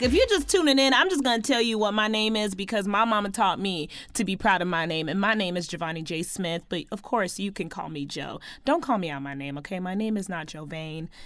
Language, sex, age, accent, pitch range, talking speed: English, female, 30-49, American, 190-290 Hz, 275 wpm